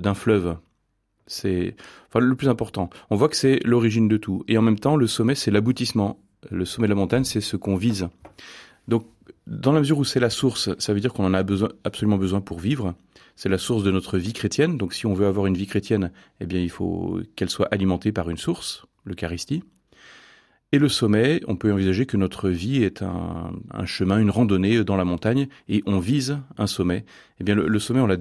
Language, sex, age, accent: French, male, 30-49, French